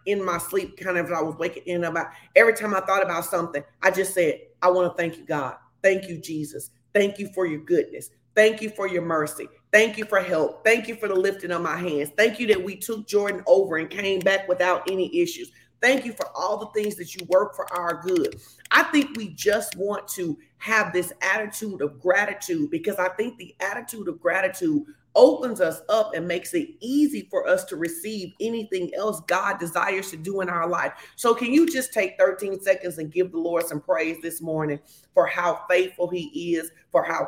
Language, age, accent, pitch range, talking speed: English, 40-59, American, 175-215 Hz, 220 wpm